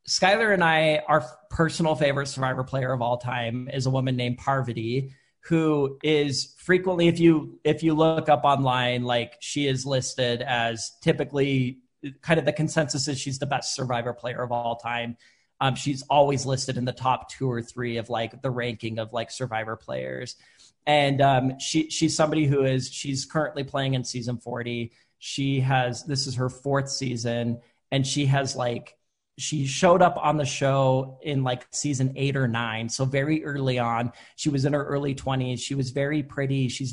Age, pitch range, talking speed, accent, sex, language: 40-59, 125-145 Hz, 185 wpm, American, male, English